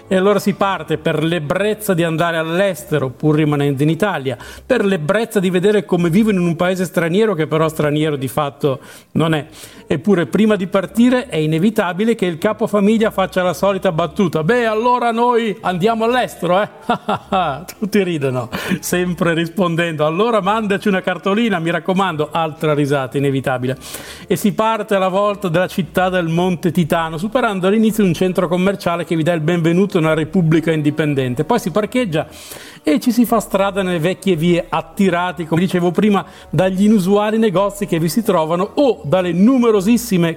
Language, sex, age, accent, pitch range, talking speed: Italian, male, 50-69, native, 160-205 Hz, 165 wpm